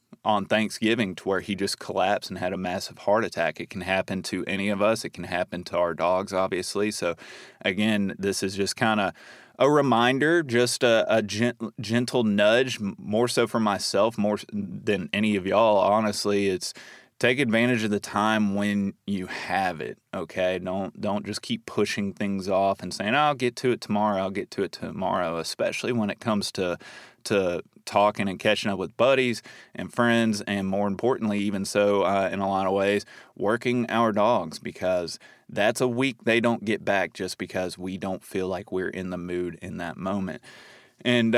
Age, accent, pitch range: 20-39, American, 95-115 Hz